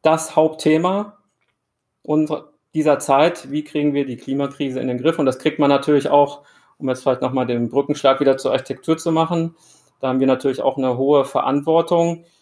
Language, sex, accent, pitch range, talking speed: German, male, German, 130-145 Hz, 180 wpm